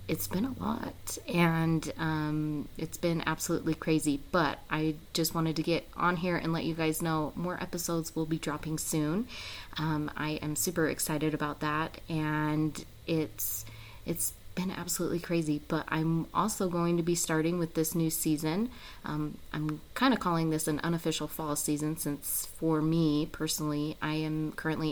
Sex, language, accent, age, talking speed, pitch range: female, English, American, 30-49, 170 wpm, 150-165 Hz